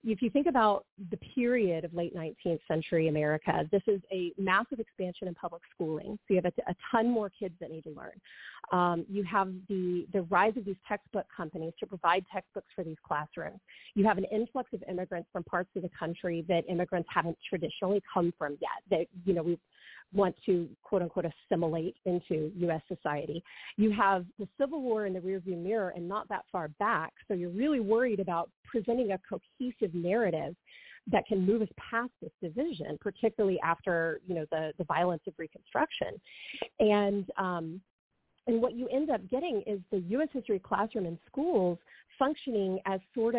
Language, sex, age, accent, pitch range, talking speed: English, female, 30-49, American, 175-220 Hz, 185 wpm